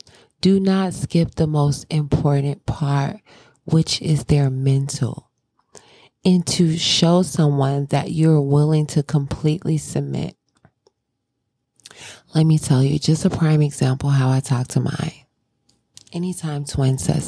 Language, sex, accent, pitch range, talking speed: English, female, American, 140-160 Hz, 130 wpm